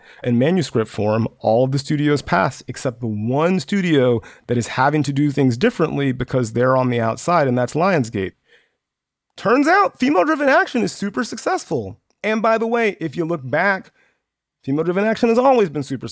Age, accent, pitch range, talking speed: 30-49, American, 110-170 Hz, 185 wpm